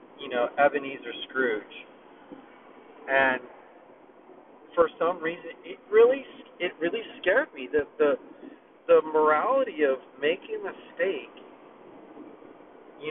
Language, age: English, 40-59